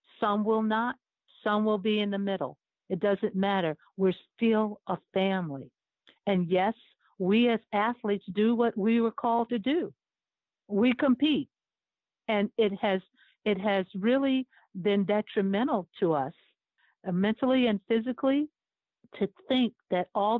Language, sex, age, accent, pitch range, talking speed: English, female, 60-79, American, 180-215 Hz, 140 wpm